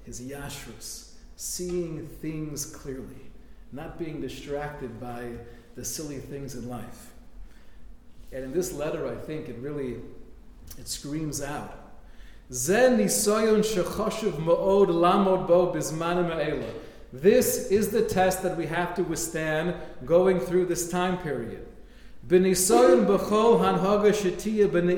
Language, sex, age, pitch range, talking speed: English, male, 40-59, 155-195 Hz, 100 wpm